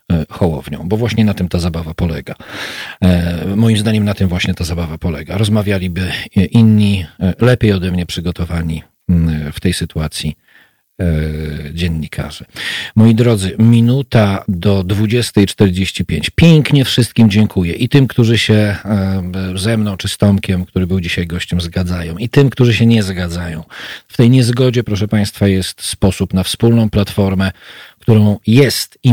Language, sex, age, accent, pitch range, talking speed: Polish, male, 40-59, native, 90-110 Hz, 140 wpm